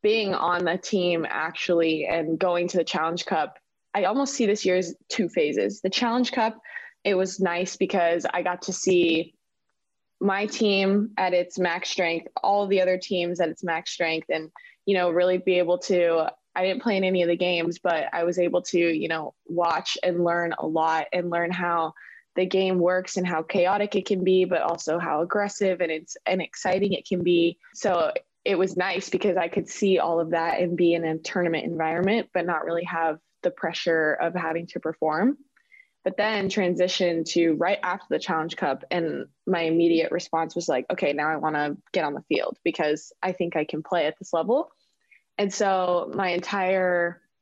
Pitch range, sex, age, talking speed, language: 170-190 Hz, female, 20-39, 200 wpm, English